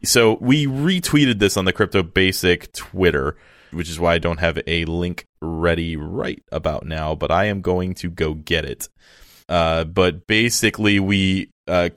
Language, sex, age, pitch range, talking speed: English, male, 20-39, 90-120 Hz, 170 wpm